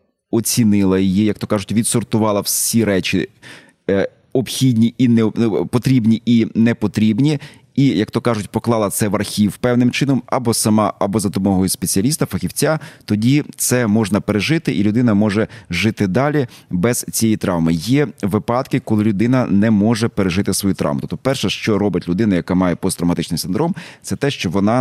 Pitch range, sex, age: 100-120 Hz, male, 30-49